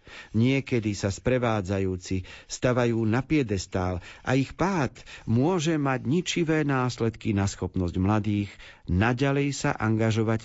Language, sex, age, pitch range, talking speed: Slovak, male, 50-69, 100-135 Hz, 110 wpm